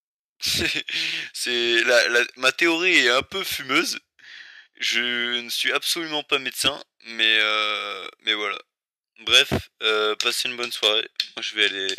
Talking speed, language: 150 wpm, French